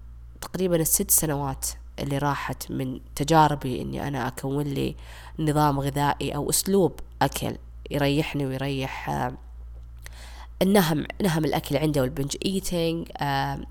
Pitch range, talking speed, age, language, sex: 135-170 Hz, 100 wpm, 20-39, Arabic, female